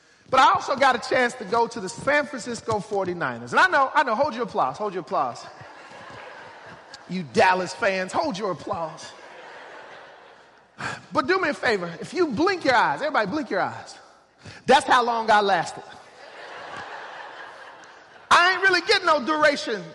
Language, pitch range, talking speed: English, 255-355 Hz, 165 wpm